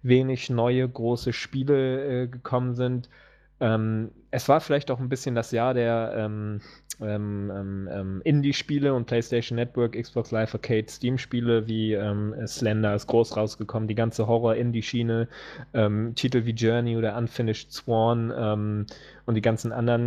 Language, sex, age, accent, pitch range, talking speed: English, male, 20-39, German, 110-125 Hz, 145 wpm